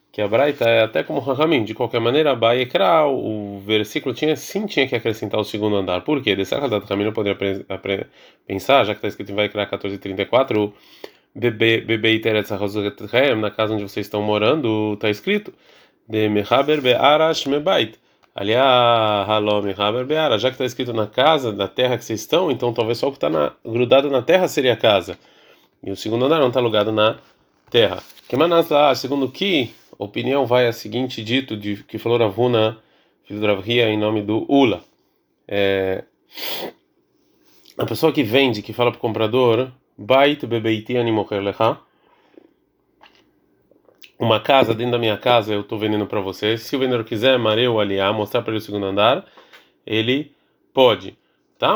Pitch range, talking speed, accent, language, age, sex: 105-130 Hz, 165 wpm, Brazilian, Portuguese, 20-39, male